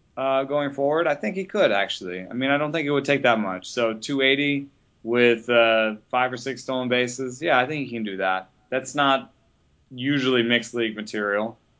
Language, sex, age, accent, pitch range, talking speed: English, male, 30-49, American, 105-125 Hz, 200 wpm